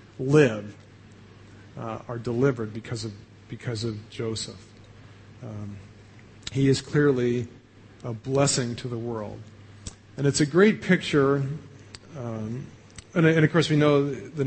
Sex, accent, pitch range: male, American, 110-145 Hz